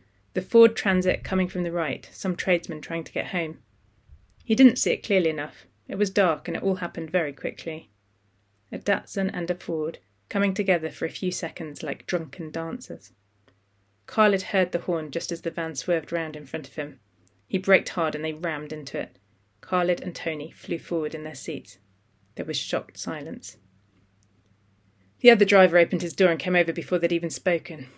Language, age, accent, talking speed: English, 30-49, British, 190 wpm